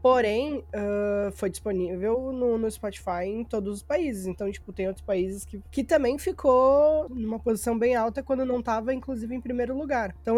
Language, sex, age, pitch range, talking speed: Portuguese, female, 20-39, 190-245 Hz, 185 wpm